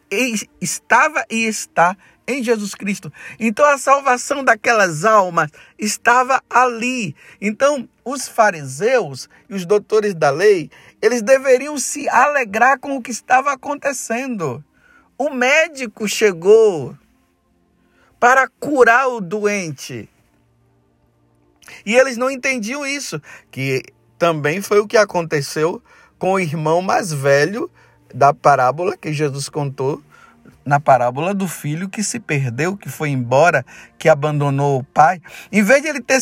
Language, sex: Portuguese, male